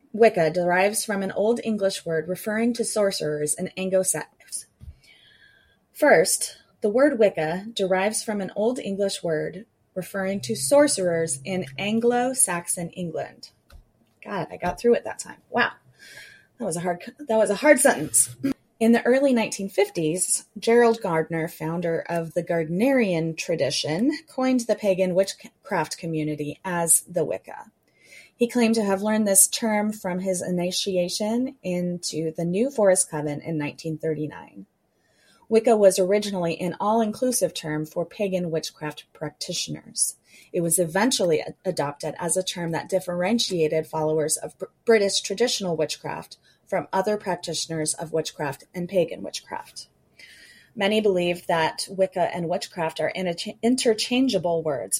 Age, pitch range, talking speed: 20-39, 165-215 Hz, 135 wpm